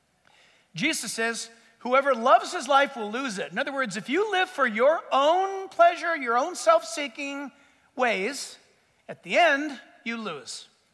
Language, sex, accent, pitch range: English, male, American, 235-330 Hz